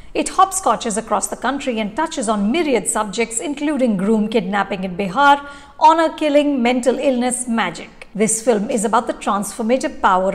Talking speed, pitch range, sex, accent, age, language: 145 wpm, 210-280 Hz, female, Indian, 50-69, English